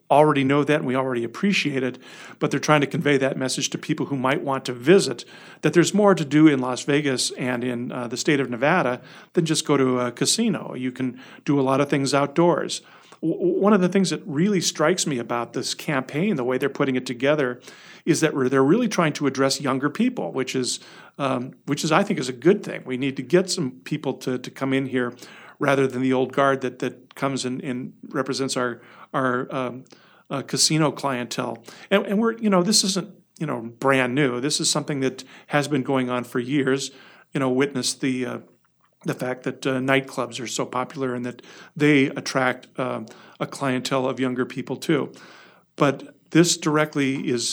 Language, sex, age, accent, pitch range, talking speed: English, male, 40-59, American, 130-155 Hz, 210 wpm